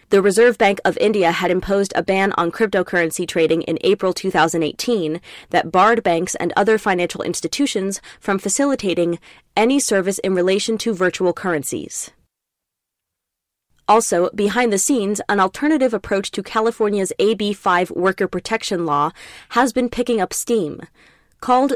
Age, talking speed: 20-39, 140 wpm